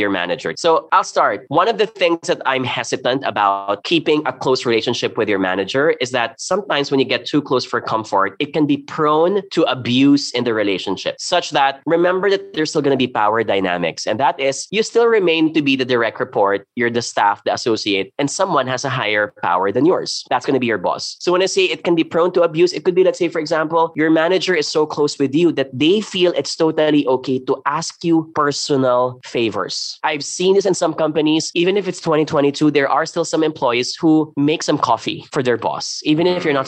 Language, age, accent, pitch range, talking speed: English, 20-39, Filipino, 130-165 Hz, 230 wpm